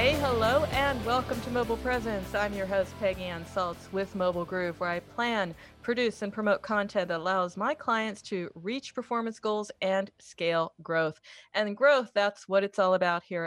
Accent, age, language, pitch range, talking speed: American, 40-59, English, 180-225 Hz, 185 wpm